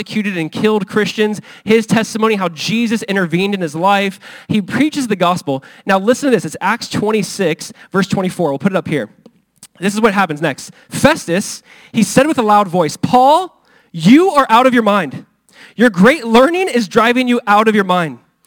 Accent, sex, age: American, male, 20-39